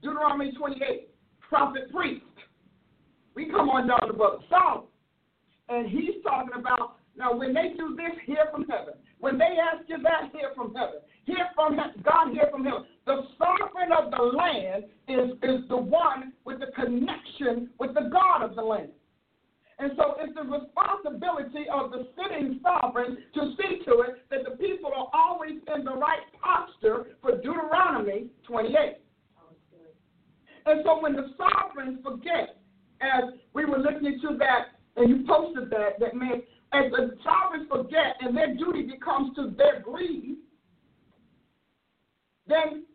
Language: English